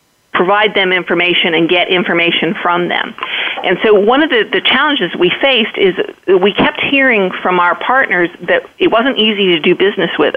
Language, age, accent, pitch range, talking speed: English, 50-69, American, 175-245 Hz, 185 wpm